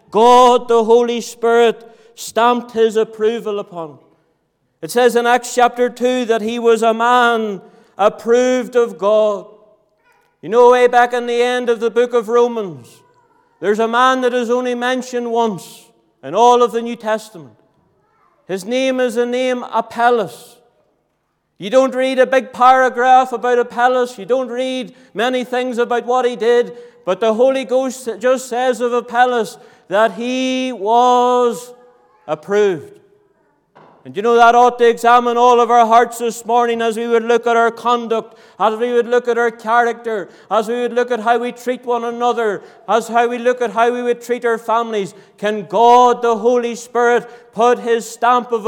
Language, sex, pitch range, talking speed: English, male, 225-245 Hz, 175 wpm